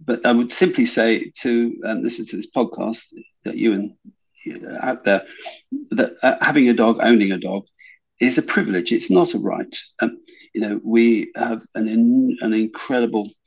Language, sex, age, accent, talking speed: English, male, 50-69, British, 175 wpm